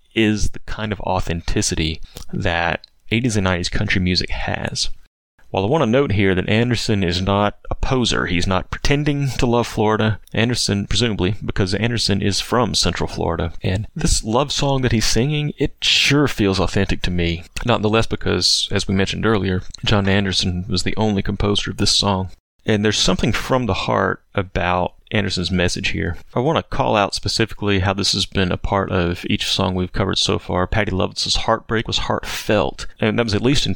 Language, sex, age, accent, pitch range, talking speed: English, male, 30-49, American, 95-110 Hz, 190 wpm